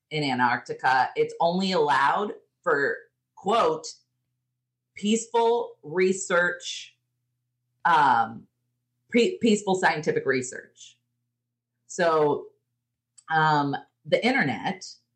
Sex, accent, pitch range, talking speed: female, American, 130-195 Hz, 70 wpm